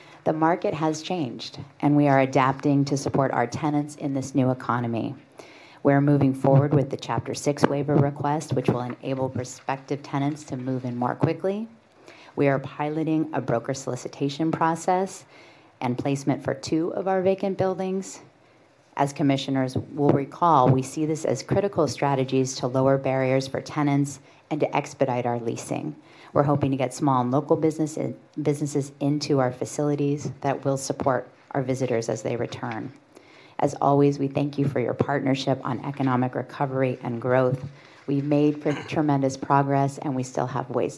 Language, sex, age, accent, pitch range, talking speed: English, female, 40-59, American, 130-150 Hz, 165 wpm